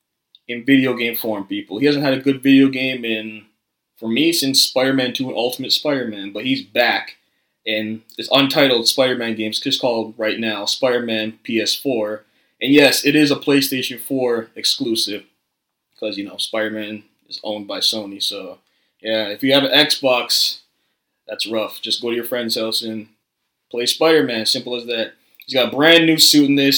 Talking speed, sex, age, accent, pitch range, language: 180 wpm, male, 20-39, American, 110-140 Hz, English